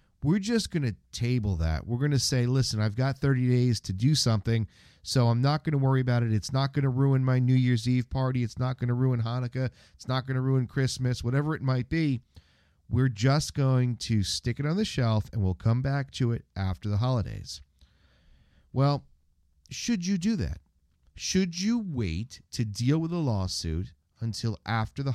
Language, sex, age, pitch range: English, male, 40-59, 100-145 Hz